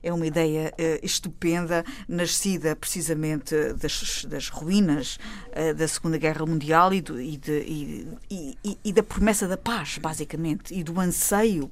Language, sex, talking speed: Portuguese, female, 155 wpm